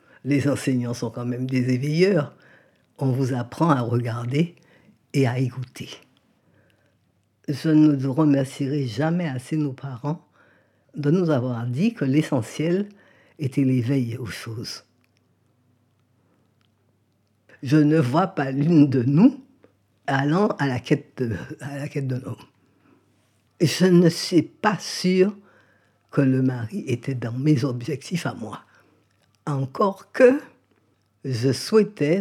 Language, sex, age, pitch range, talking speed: French, female, 50-69, 120-160 Hz, 125 wpm